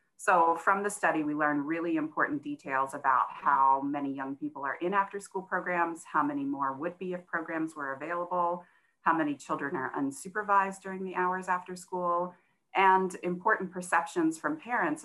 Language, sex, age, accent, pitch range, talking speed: English, female, 30-49, American, 140-180 Hz, 170 wpm